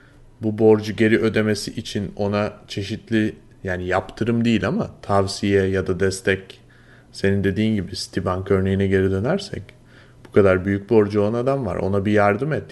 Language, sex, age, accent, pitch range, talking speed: Turkish, male, 30-49, native, 105-130 Hz, 155 wpm